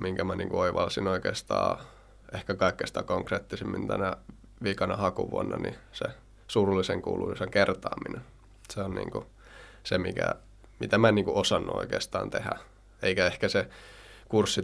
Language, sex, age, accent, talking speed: Finnish, male, 20-39, native, 130 wpm